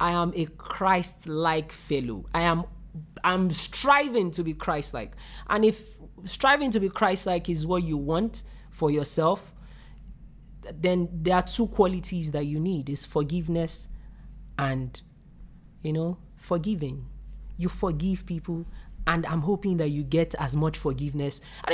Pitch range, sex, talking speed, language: 165-215 Hz, male, 140 wpm, English